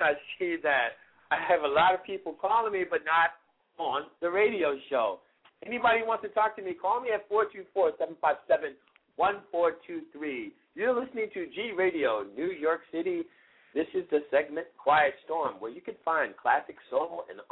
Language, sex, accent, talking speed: English, male, American, 180 wpm